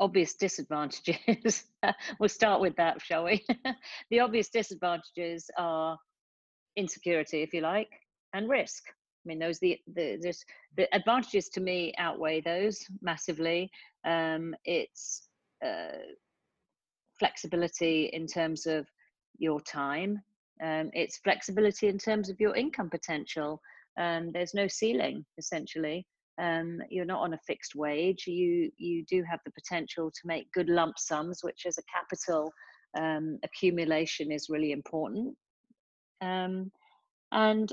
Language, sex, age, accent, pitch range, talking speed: English, female, 50-69, British, 160-200 Hz, 130 wpm